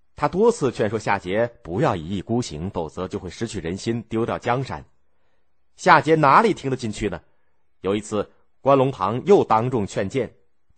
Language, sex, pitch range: Chinese, male, 80-135 Hz